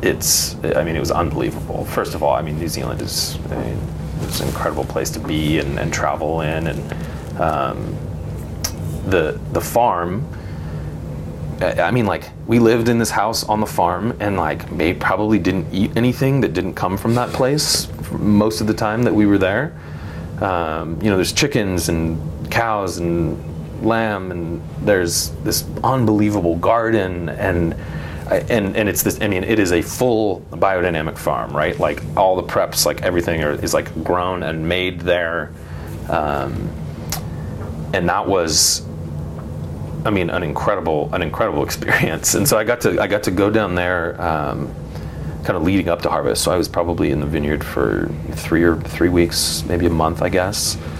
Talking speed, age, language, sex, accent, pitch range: 175 wpm, 30-49, English, male, American, 80-100 Hz